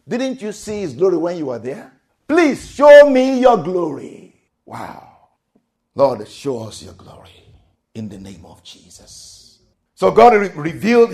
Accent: Nigerian